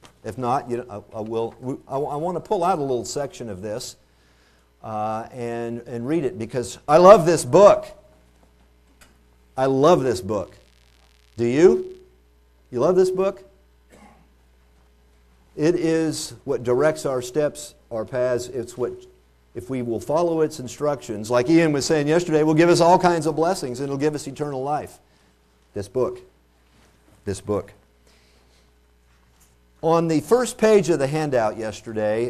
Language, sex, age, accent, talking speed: English, male, 50-69, American, 155 wpm